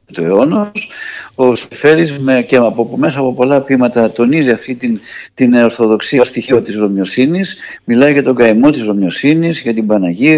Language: Greek